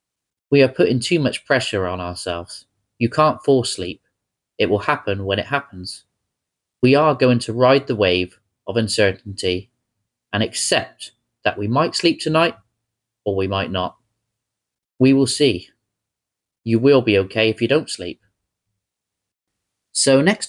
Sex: male